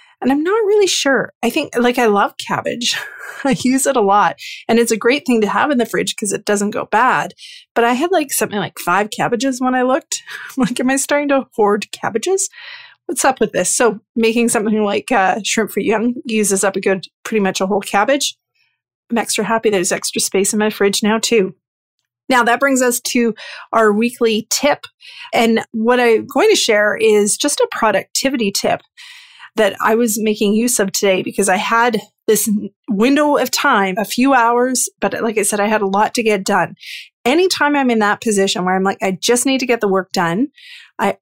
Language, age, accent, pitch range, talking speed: English, 30-49, American, 205-265 Hz, 210 wpm